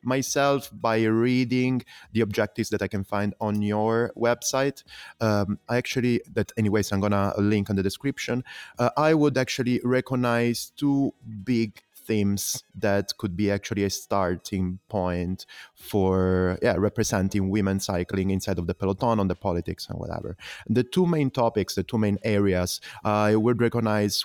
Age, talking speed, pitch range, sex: 30-49, 160 wpm, 100-125 Hz, male